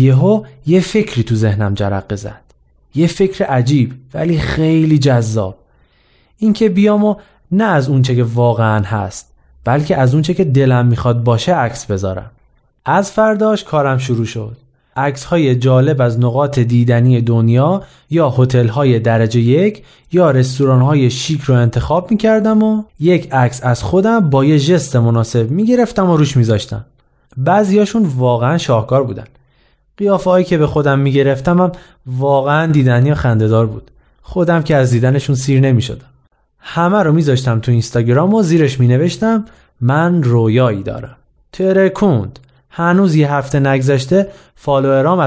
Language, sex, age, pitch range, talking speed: Persian, male, 30-49, 120-175 Hz, 135 wpm